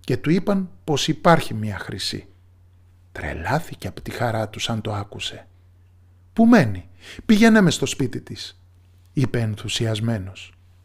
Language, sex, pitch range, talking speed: Greek, male, 90-145 Hz, 125 wpm